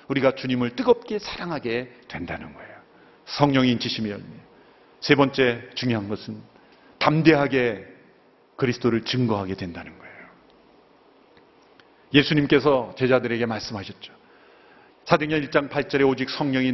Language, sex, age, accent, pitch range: Korean, male, 40-59, native, 120-195 Hz